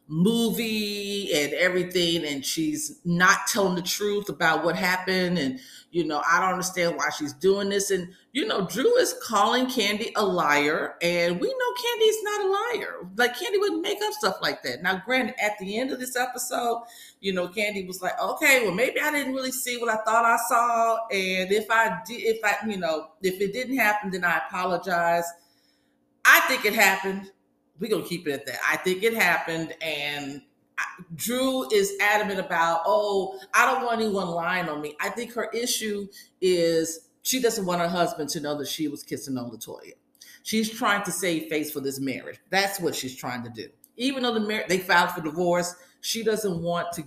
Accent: American